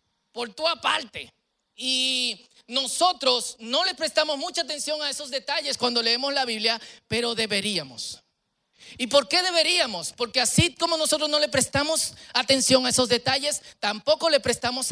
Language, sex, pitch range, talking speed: Spanish, male, 185-250 Hz, 150 wpm